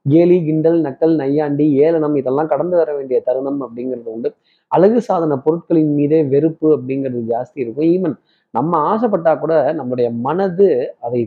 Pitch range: 130-165 Hz